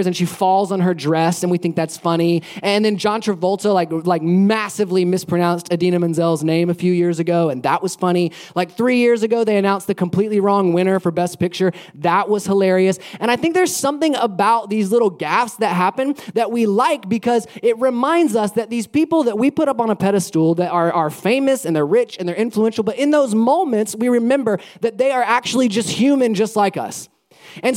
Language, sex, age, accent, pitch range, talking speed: English, male, 20-39, American, 180-235 Hz, 215 wpm